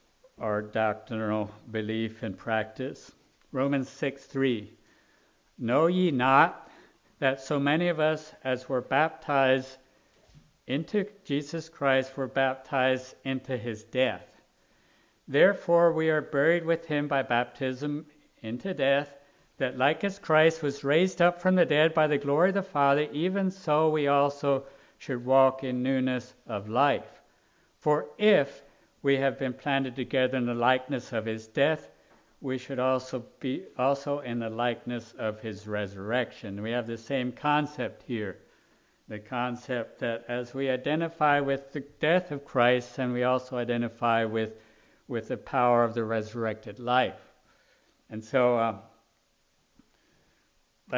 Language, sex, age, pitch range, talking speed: English, male, 60-79, 120-145 Hz, 140 wpm